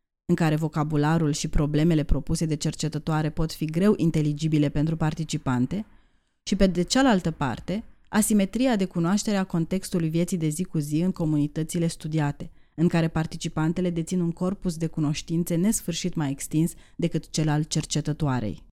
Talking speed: 150 wpm